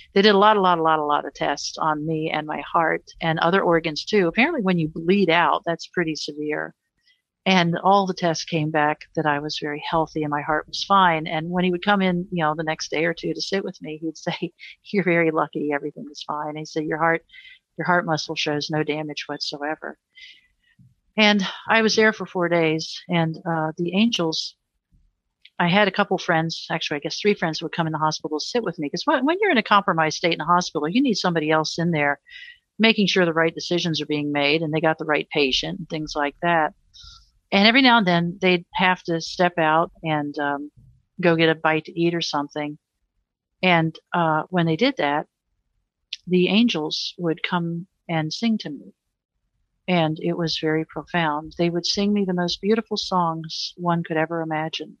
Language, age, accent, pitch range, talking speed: English, 50-69, American, 155-185 Hz, 215 wpm